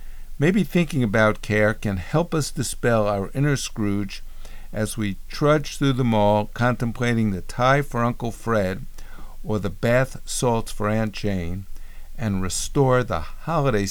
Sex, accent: male, American